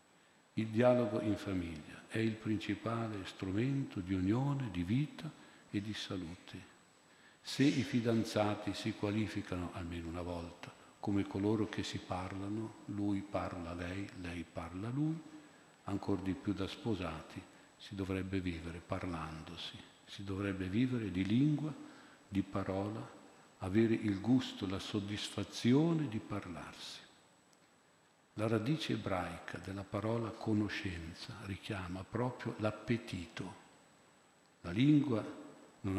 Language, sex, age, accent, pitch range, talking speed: Italian, male, 50-69, native, 95-110 Hz, 115 wpm